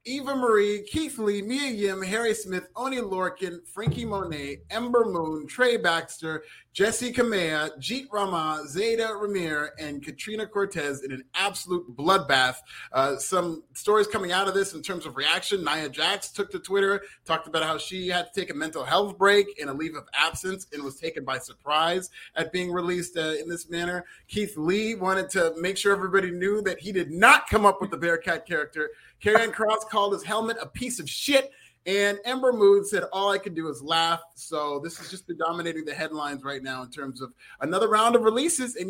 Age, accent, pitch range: 30-49, American, 165-215 Hz